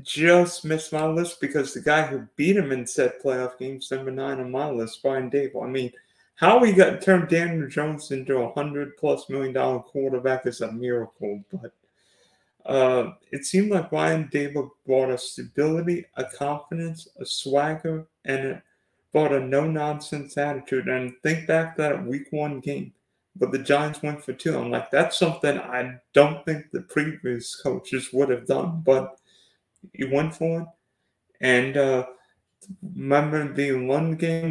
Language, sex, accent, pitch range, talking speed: English, male, American, 135-160 Hz, 170 wpm